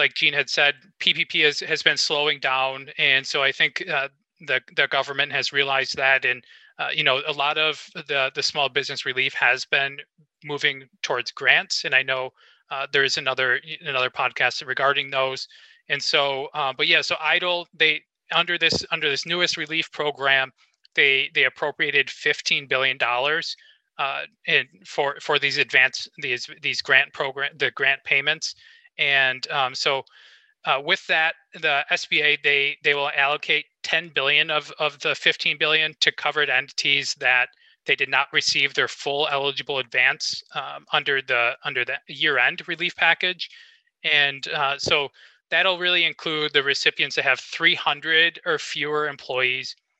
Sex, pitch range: male, 140-170 Hz